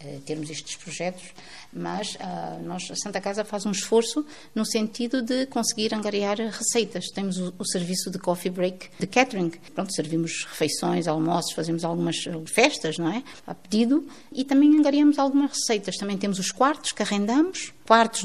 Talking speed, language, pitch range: 165 wpm, Portuguese, 180-235 Hz